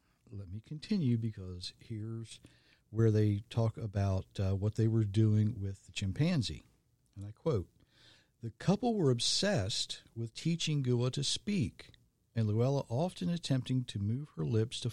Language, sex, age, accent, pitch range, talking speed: English, male, 50-69, American, 100-130 Hz, 155 wpm